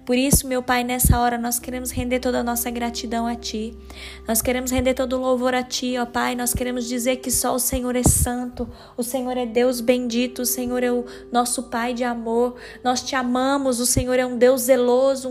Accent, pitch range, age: Brazilian, 235-265 Hz, 10-29